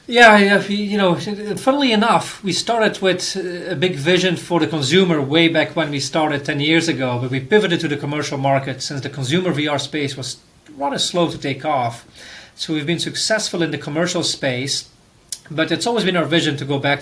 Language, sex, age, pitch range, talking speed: English, male, 30-49, 140-165 Hz, 200 wpm